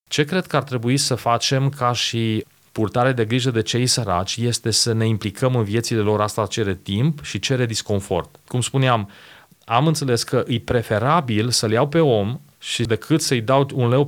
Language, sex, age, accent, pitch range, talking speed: Romanian, male, 30-49, native, 110-135 Hz, 190 wpm